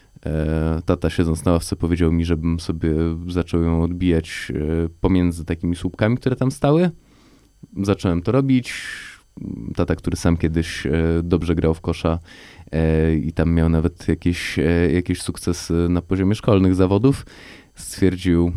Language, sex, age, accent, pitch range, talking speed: Polish, male, 20-39, native, 85-95 Hz, 130 wpm